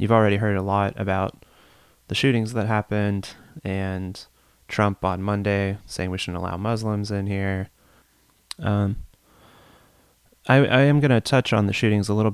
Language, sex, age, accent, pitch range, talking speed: English, male, 20-39, American, 100-115 Hz, 160 wpm